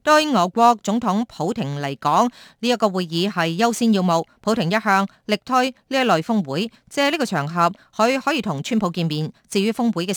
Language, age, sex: Chinese, 30-49, female